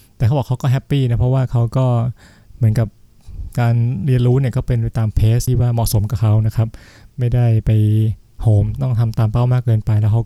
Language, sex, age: Thai, male, 20-39